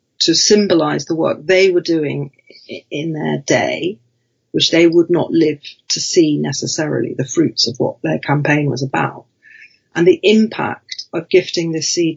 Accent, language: British, English